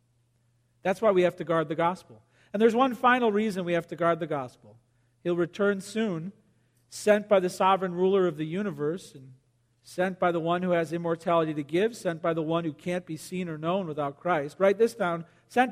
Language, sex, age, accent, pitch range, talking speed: English, male, 50-69, American, 130-200 Hz, 215 wpm